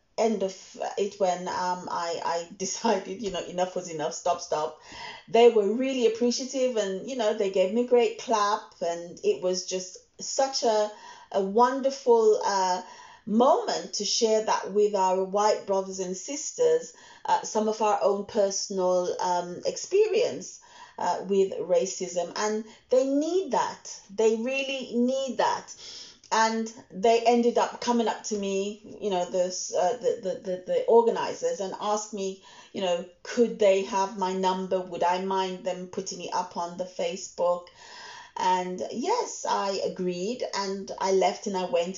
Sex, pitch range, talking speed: female, 185-240 Hz, 160 wpm